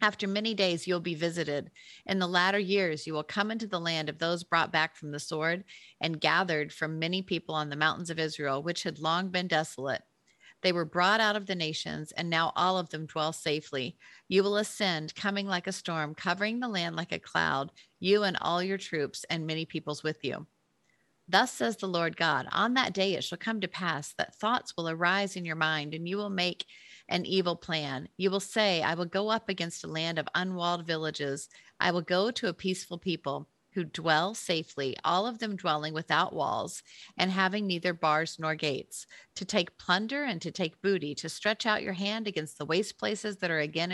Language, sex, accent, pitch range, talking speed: English, female, American, 160-195 Hz, 215 wpm